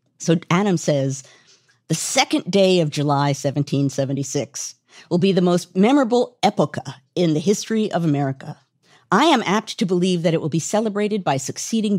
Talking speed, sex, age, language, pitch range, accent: 160 wpm, female, 50-69, English, 145-210 Hz, American